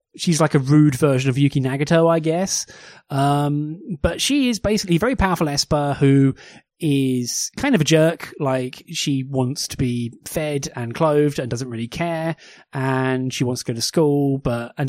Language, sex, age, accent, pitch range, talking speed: English, male, 20-39, British, 125-165 Hz, 185 wpm